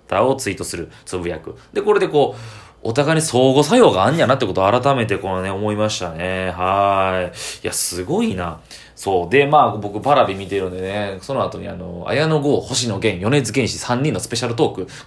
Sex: male